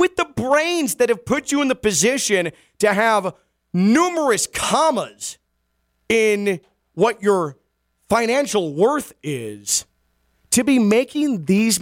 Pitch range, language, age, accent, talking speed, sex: 140-220 Hz, English, 30-49, American, 120 wpm, male